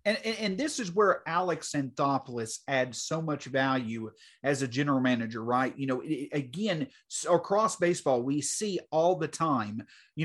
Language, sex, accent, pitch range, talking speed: English, male, American, 145-225 Hz, 160 wpm